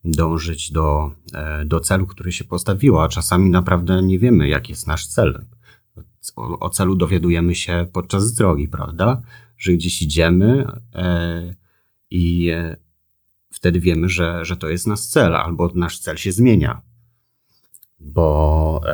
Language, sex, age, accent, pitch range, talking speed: Polish, male, 30-49, native, 80-100 Hz, 130 wpm